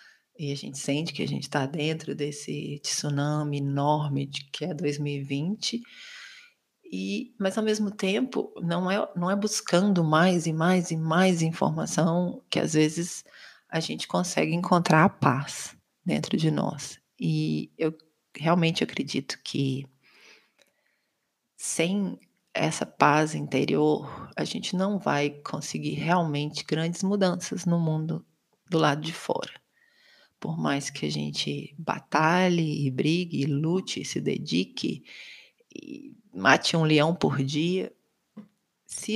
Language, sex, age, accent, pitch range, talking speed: Portuguese, female, 40-59, Brazilian, 145-180 Hz, 125 wpm